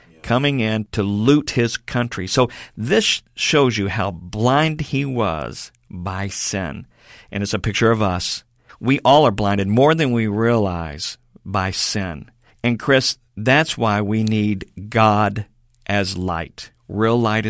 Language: English